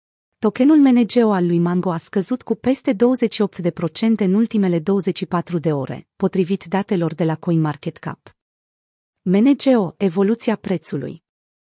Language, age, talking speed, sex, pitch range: Romanian, 30-49, 120 wpm, female, 175-220 Hz